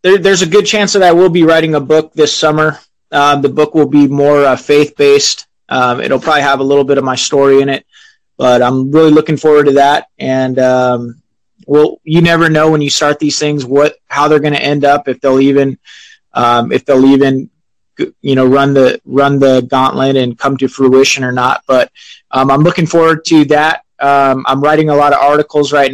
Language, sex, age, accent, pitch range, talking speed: English, male, 20-39, American, 130-150 Hz, 215 wpm